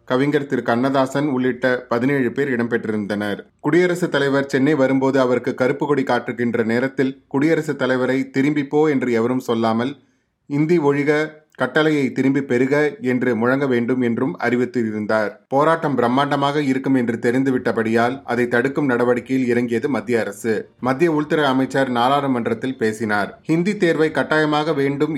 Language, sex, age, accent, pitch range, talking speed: Tamil, male, 30-49, native, 120-145 Hz, 125 wpm